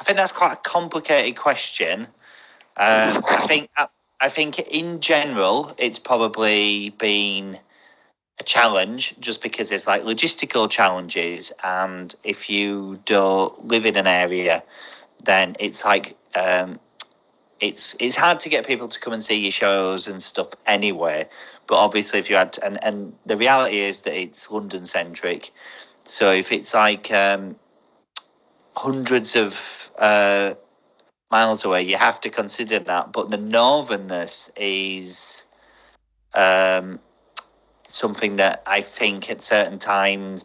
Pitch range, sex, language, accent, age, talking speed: 95-115 Hz, male, English, British, 30-49, 140 wpm